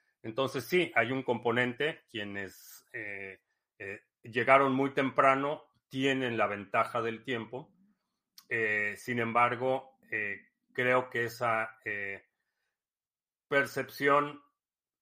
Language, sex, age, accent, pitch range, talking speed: Spanish, male, 40-59, Mexican, 115-140 Hz, 100 wpm